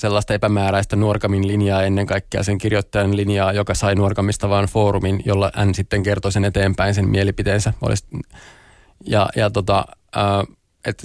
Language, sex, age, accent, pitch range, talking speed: Finnish, male, 20-39, native, 100-105 Hz, 140 wpm